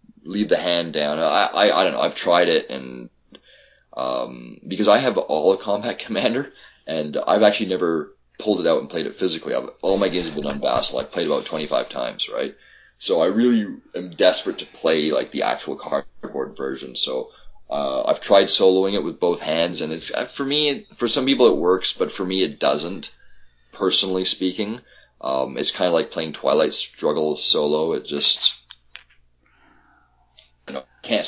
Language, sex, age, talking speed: English, male, 30-49, 185 wpm